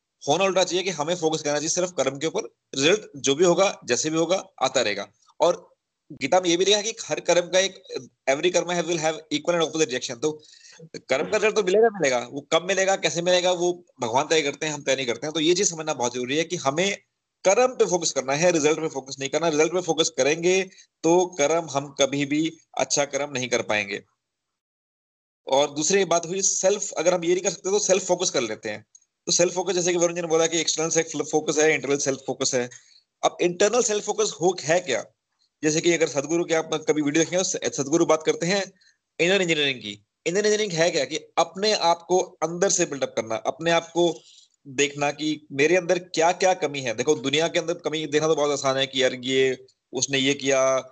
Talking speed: 225 wpm